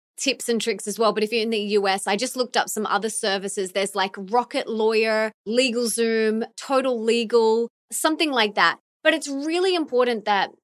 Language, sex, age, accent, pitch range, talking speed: English, female, 20-39, Australian, 215-270 Hz, 185 wpm